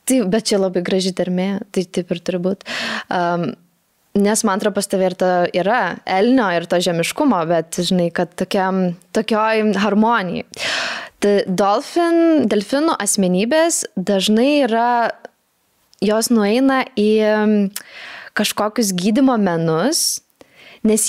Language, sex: English, female